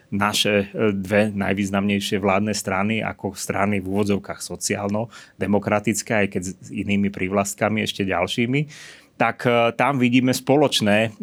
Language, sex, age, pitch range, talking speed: Slovak, male, 30-49, 100-115 Hz, 110 wpm